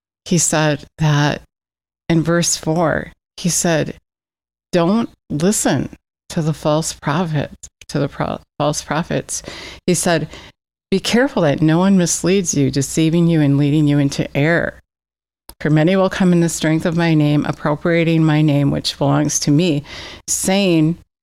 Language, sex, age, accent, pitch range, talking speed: English, female, 50-69, American, 145-170 Hz, 150 wpm